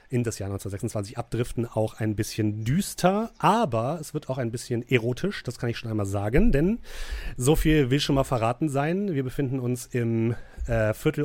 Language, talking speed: German, 190 wpm